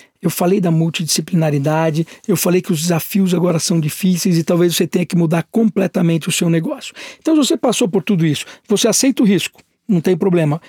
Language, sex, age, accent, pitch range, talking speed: Portuguese, male, 60-79, Brazilian, 170-220 Hz, 200 wpm